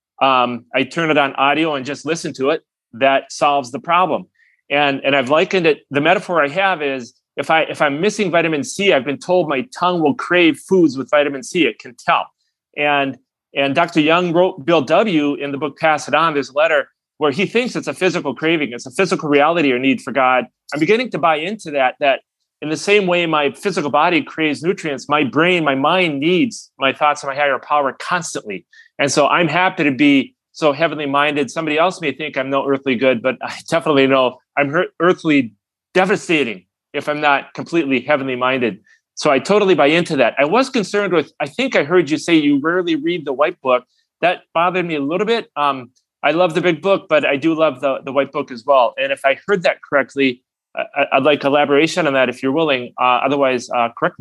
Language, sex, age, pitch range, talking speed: English, male, 30-49, 135-180 Hz, 215 wpm